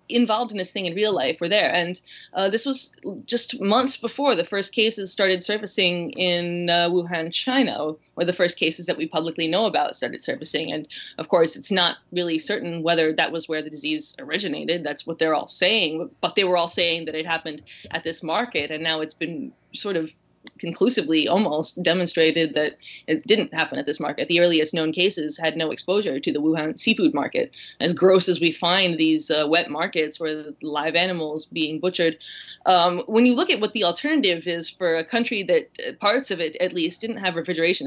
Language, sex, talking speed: English, female, 205 wpm